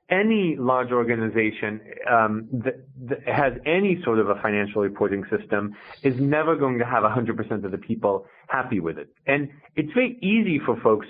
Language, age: English, 30-49